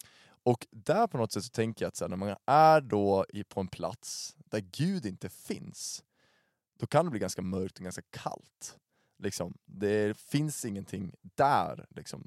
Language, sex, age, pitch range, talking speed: Swedish, male, 20-39, 100-125 Hz, 180 wpm